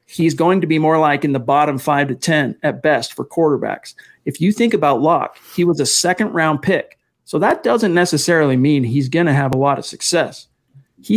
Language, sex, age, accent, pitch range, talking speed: English, male, 40-59, American, 145-180 Hz, 215 wpm